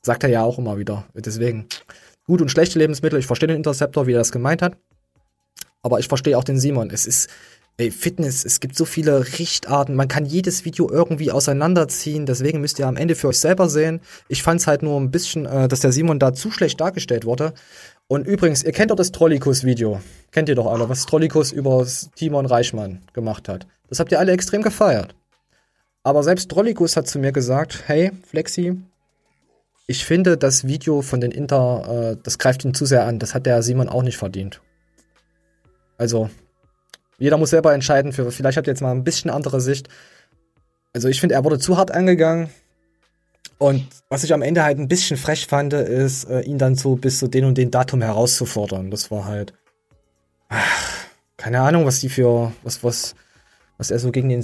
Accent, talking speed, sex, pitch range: German, 200 wpm, male, 125-160 Hz